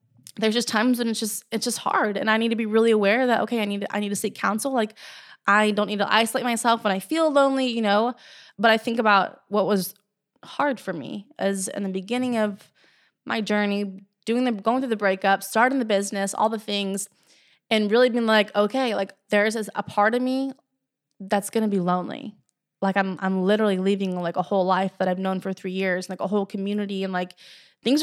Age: 20-39